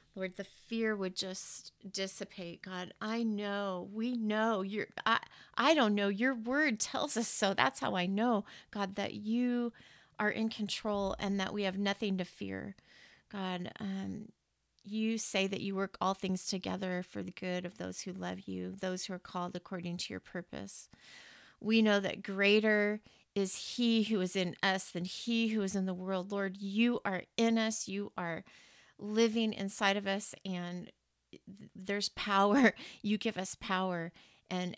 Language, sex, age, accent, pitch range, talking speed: English, female, 30-49, American, 185-215 Hz, 175 wpm